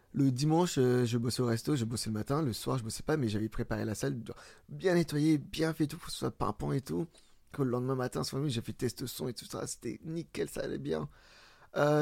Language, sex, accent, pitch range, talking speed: French, male, French, 120-150 Hz, 260 wpm